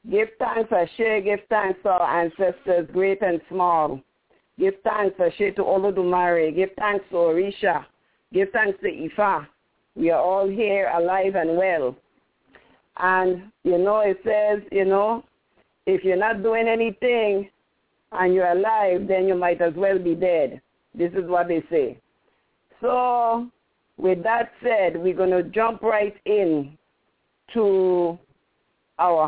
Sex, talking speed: female, 145 wpm